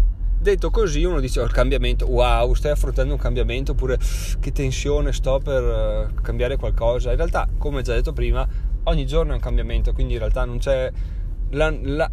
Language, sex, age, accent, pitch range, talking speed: Italian, male, 30-49, native, 100-135 Hz, 195 wpm